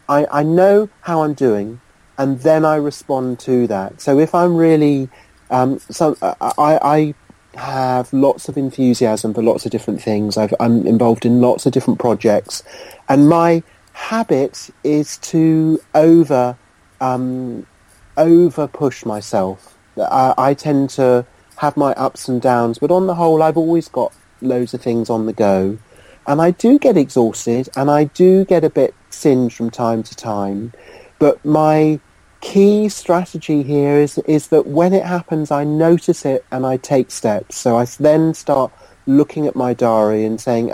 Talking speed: 165 wpm